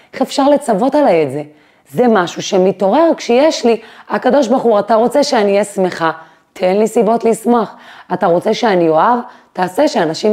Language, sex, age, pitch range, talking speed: Hebrew, female, 30-49, 160-220 Hz, 170 wpm